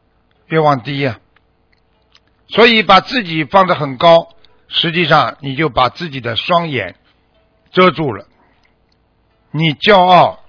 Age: 60-79